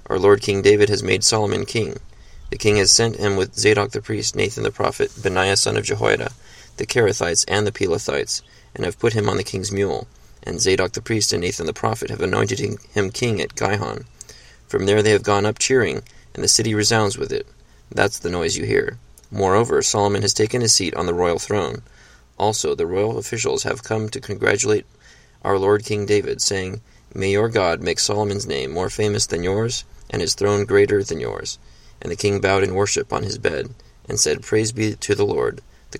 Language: English